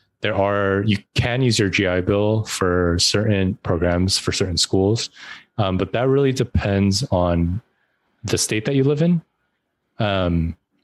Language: English